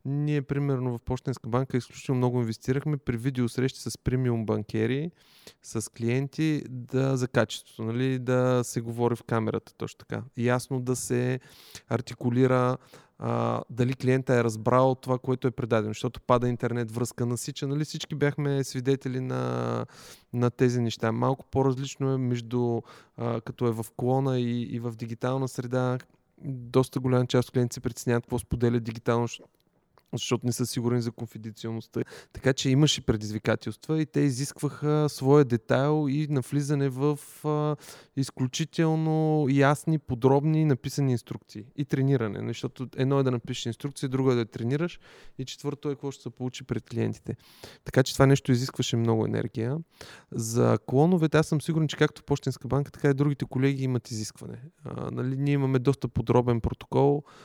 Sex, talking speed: male, 155 wpm